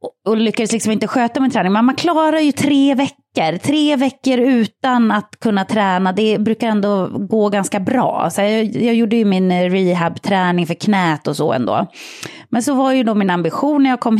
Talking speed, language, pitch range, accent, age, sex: 200 wpm, English, 185-245 Hz, Swedish, 30-49, female